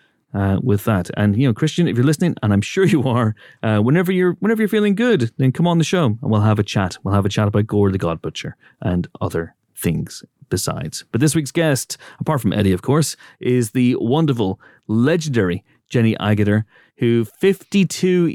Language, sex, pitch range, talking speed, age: English, male, 95-125 Hz, 205 wpm, 30-49